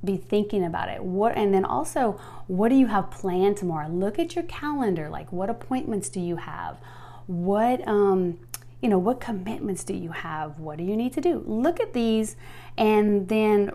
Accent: American